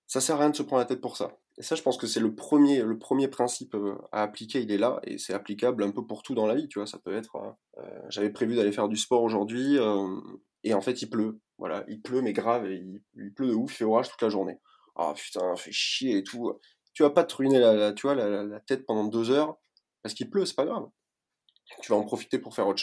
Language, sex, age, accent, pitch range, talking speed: French, male, 20-39, French, 105-125 Hz, 280 wpm